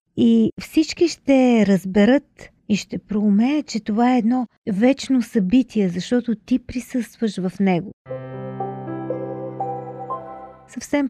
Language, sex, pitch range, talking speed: Bulgarian, female, 195-240 Hz, 105 wpm